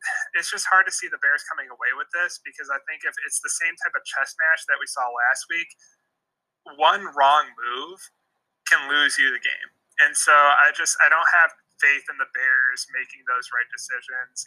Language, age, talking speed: English, 20-39, 205 wpm